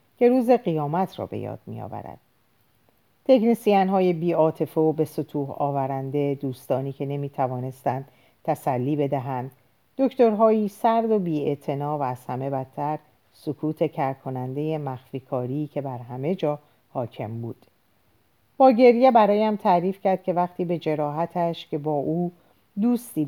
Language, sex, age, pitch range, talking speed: Persian, female, 50-69, 135-185 Hz, 125 wpm